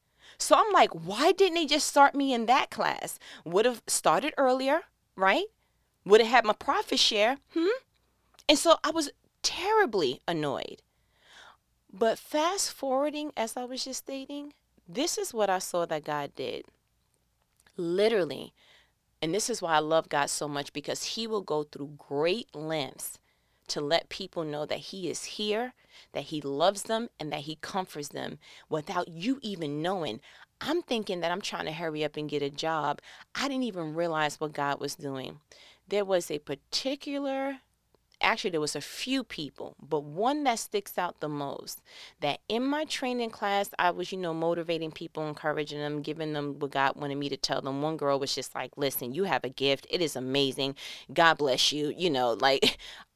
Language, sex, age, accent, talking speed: English, female, 30-49, American, 185 wpm